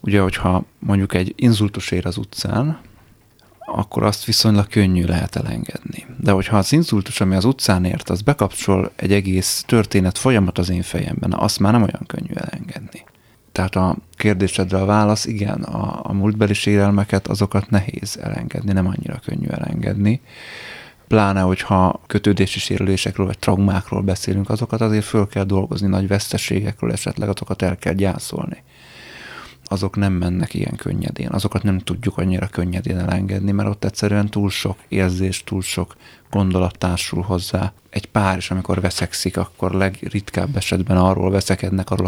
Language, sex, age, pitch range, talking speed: Hungarian, male, 30-49, 95-110 Hz, 155 wpm